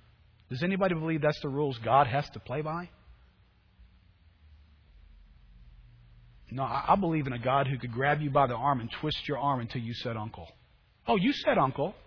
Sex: male